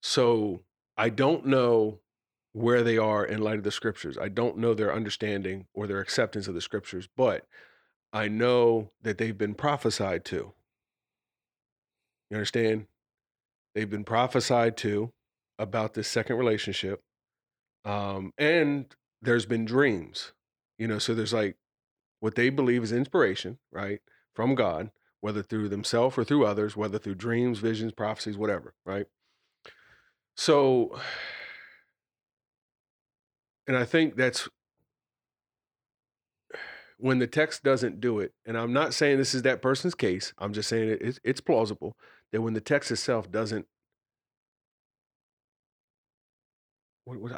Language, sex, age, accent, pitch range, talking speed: English, male, 40-59, American, 105-120 Hz, 130 wpm